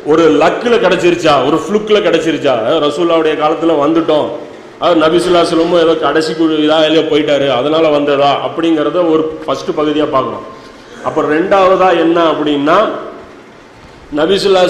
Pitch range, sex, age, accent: 150-195 Hz, male, 40-59, native